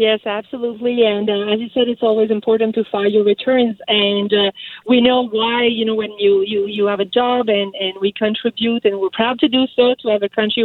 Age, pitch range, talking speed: 40-59, 205-245 Hz, 230 wpm